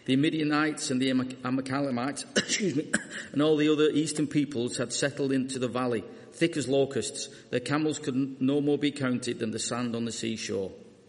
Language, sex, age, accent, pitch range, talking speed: English, male, 40-59, British, 125-145 Hz, 185 wpm